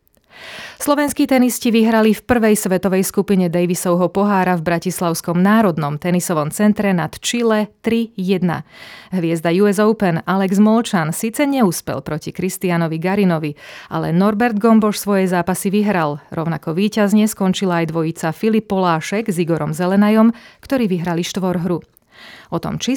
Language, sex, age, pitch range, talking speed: Slovak, female, 30-49, 170-215 Hz, 130 wpm